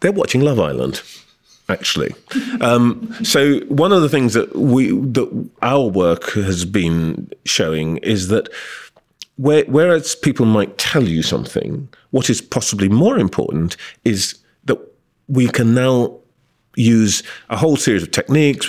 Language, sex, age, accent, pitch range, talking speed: English, male, 40-59, British, 95-130 Hz, 140 wpm